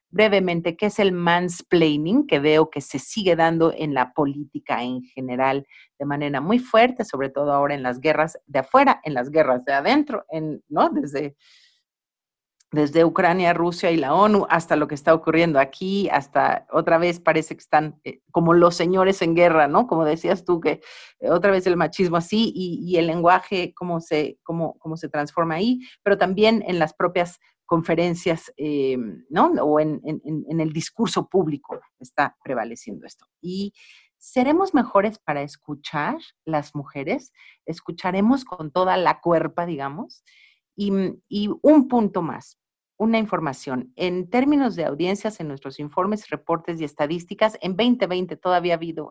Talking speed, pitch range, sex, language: 160 wpm, 155-200 Hz, female, Spanish